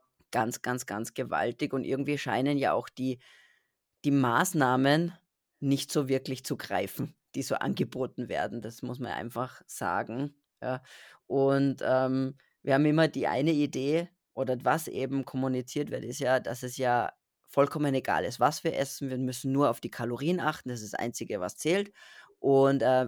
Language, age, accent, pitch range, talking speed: German, 20-39, German, 125-145 Hz, 170 wpm